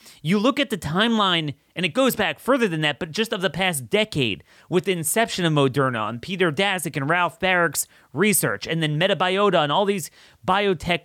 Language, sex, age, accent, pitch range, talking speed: English, male, 30-49, American, 130-195 Hz, 200 wpm